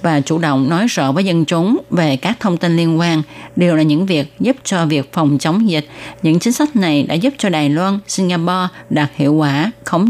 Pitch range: 150-205 Hz